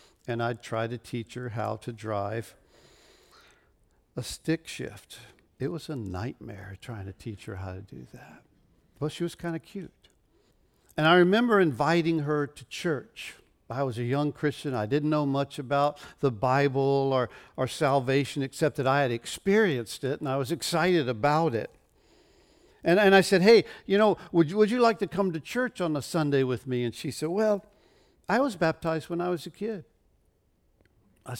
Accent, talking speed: American, 185 wpm